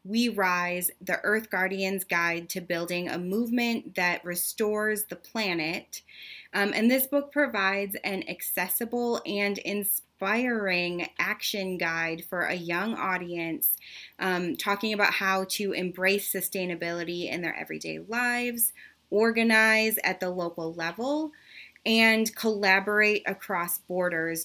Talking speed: 120 wpm